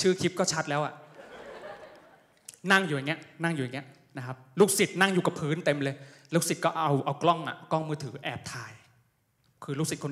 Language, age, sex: Thai, 20-39, male